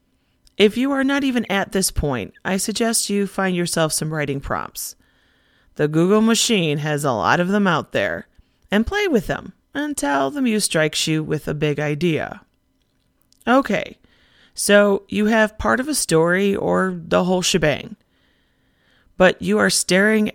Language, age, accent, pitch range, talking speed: English, 30-49, American, 155-220 Hz, 160 wpm